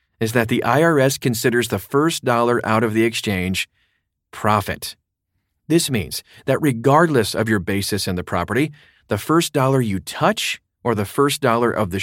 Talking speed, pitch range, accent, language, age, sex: 170 wpm, 100-135 Hz, American, English, 40-59, male